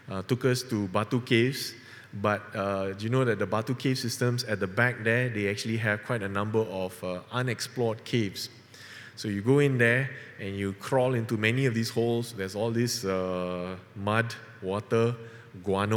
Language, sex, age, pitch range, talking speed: English, male, 20-39, 110-125 Hz, 190 wpm